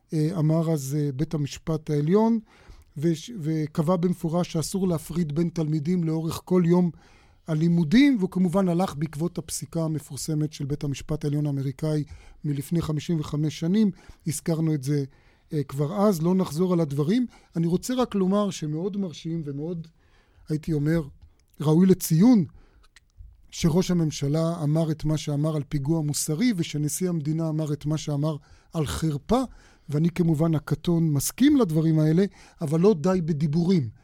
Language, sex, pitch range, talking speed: Hebrew, male, 155-185 Hz, 135 wpm